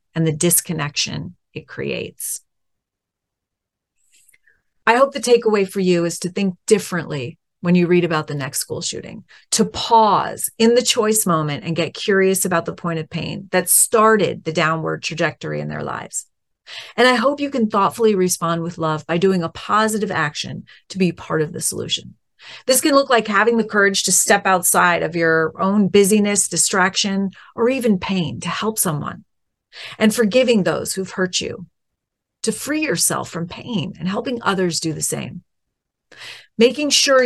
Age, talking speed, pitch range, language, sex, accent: 40-59, 170 wpm, 170-225 Hz, English, female, American